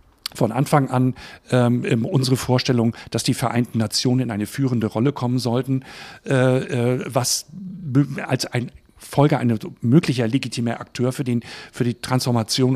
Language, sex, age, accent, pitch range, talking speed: German, male, 50-69, German, 125-145 Hz, 140 wpm